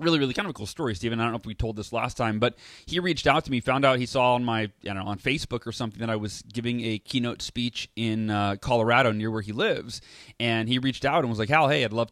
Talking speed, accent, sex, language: 300 wpm, American, male, English